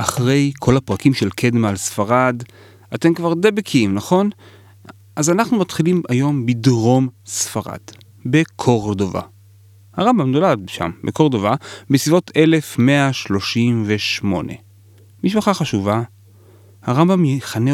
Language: Hebrew